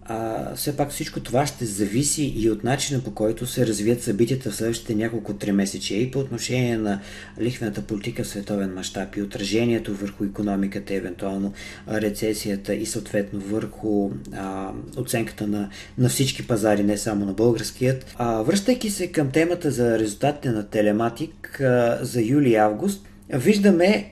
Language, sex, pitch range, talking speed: Bulgarian, male, 105-135 Hz, 155 wpm